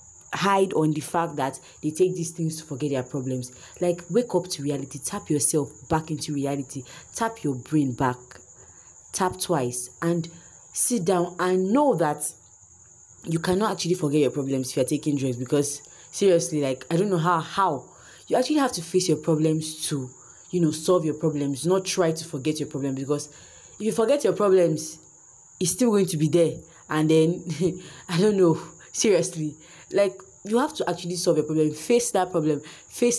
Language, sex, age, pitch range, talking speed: English, female, 30-49, 145-185 Hz, 185 wpm